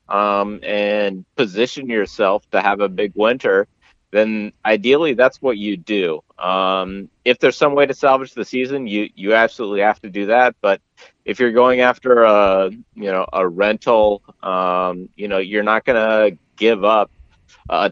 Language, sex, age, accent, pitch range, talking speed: English, male, 30-49, American, 95-115 Hz, 170 wpm